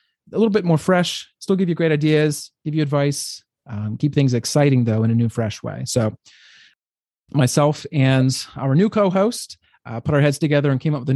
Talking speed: 210 wpm